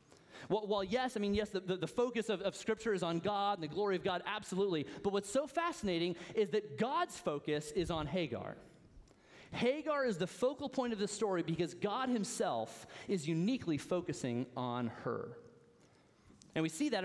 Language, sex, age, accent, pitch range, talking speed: English, male, 30-49, American, 170-225 Hz, 185 wpm